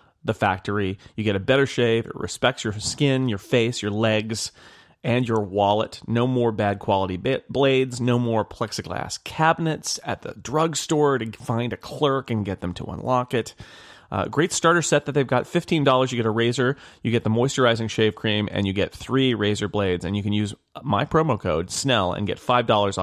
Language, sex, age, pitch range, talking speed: English, male, 30-49, 100-125 Hz, 195 wpm